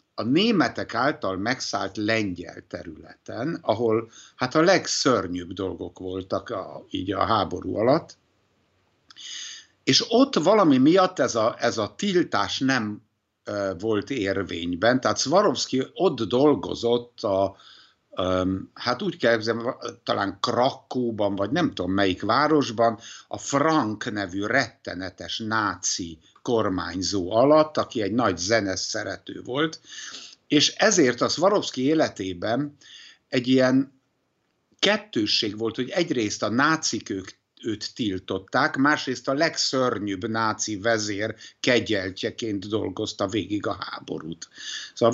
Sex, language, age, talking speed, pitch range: male, Hungarian, 60-79, 110 wpm, 100-140 Hz